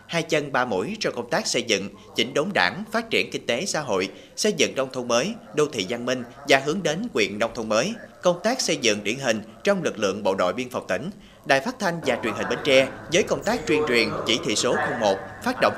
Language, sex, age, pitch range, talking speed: Vietnamese, male, 30-49, 125-180 Hz, 255 wpm